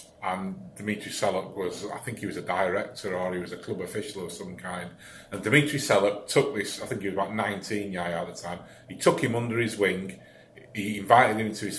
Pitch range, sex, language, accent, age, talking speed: 100-120 Hz, male, English, British, 30-49, 230 wpm